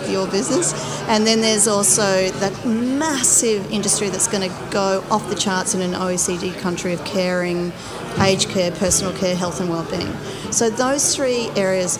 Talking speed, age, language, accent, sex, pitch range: 165 wpm, 40-59, English, Australian, female, 185-225 Hz